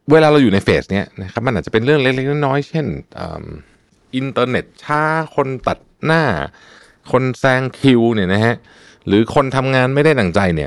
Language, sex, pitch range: Thai, male, 90-135 Hz